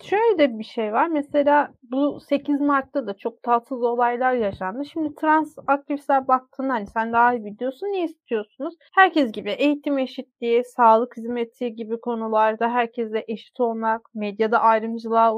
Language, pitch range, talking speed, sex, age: Turkish, 235-290 Hz, 150 wpm, female, 30-49